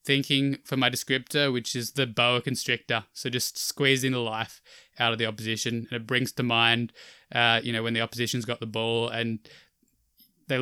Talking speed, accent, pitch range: 190 wpm, Australian, 115-125 Hz